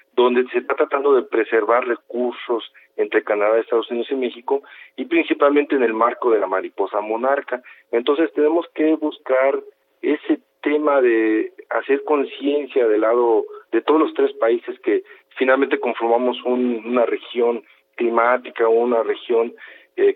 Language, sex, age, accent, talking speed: Spanish, male, 50-69, Mexican, 145 wpm